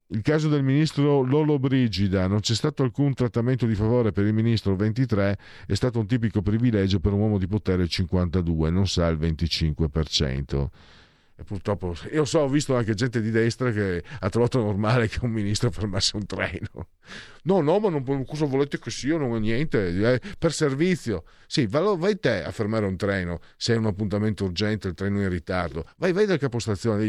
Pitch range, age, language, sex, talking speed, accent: 85-115 Hz, 50-69, Italian, male, 200 wpm, native